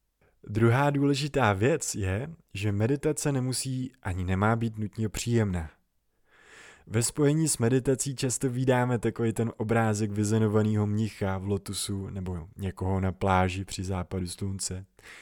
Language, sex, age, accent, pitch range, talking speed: Czech, male, 20-39, native, 100-120 Hz, 125 wpm